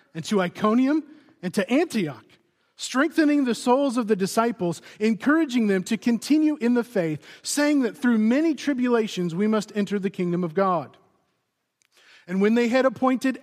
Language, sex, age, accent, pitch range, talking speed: English, male, 40-59, American, 185-240 Hz, 160 wpm